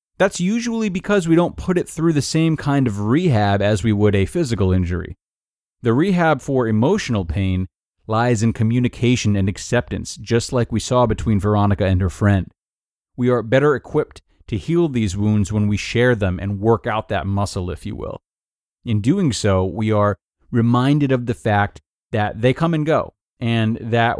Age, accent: 30-49, American